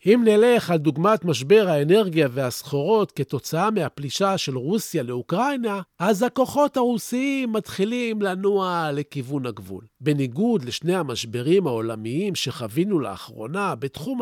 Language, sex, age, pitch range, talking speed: Hebrew, male, 40-59, 145-220 Hz, 110 wpm